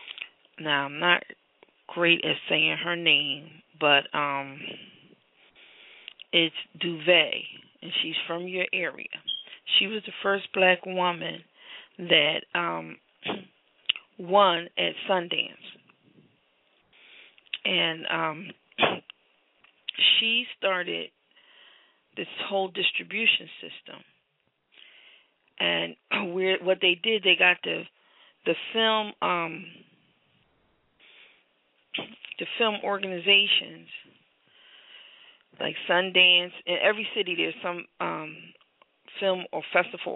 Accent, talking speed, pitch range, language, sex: American, 90 wpm, 165-200 Hz, English, female